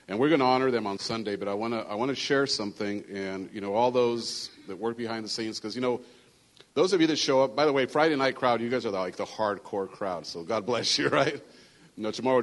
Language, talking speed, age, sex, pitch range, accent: English, 275 wpm, 40-59, male, 105-130 Hz, American